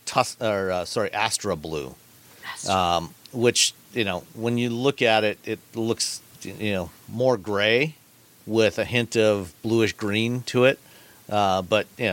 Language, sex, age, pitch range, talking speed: English, male, 40-59, 95-110 Hz, 155 wpm